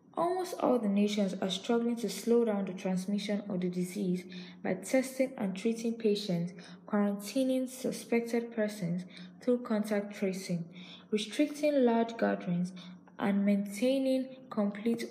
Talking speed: 125 wpm